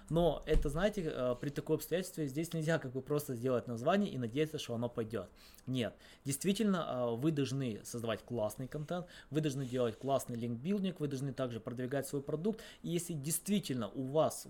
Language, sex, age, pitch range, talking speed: Russian, male, 20-39, 120-145 Hz, 170 wpm